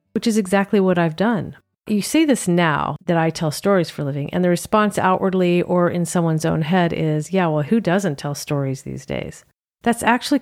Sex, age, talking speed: female, 40-59, 215 wpm